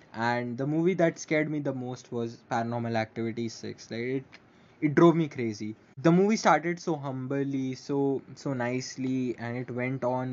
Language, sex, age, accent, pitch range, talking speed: English, male, 20-39, Indian, 120-145 Hz, 175 wpm